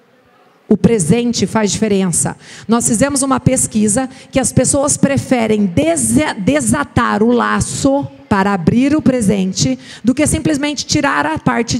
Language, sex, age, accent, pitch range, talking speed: Portuguese, female, 40-59, Brazilian, 195-245 Hz, 125 wpm